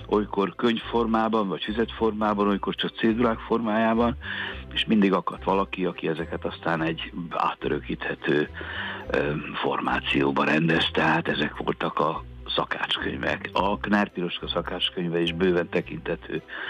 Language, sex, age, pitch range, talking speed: Hungarian, male, 60-79, 80-110 Hz, 110 wpm